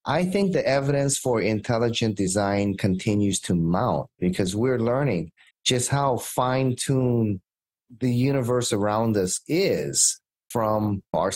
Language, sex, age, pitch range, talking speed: English, male, 30-49, 105-135 Hz, 120 wpm